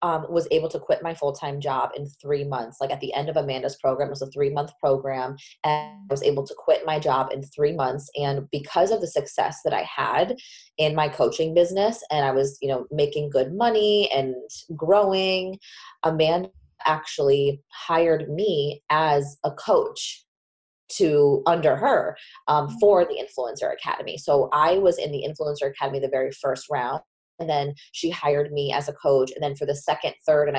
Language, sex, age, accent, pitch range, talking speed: English, female, 20-39, American, 145-170 Hz, 190 wpm